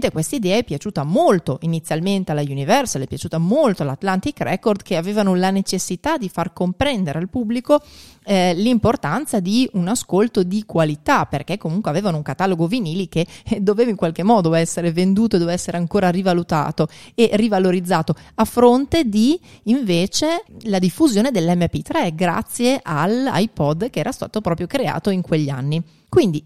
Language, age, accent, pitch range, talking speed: Italian, 30-49, native, 165-225 Hz, 150 wpm